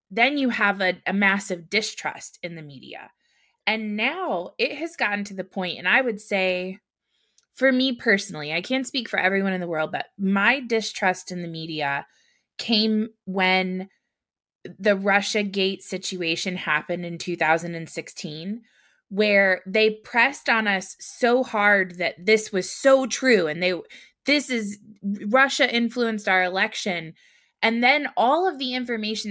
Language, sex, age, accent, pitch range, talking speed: English, female, 20-39, American, 185-255 Hz, 150 wpm